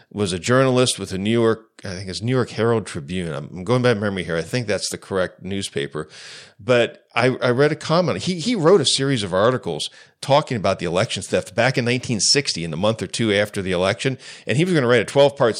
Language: English